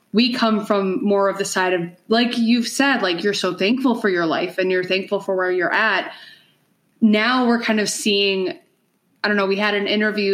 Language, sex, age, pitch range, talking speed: English, female, 20-39, 180-210 Hz, 215 wpm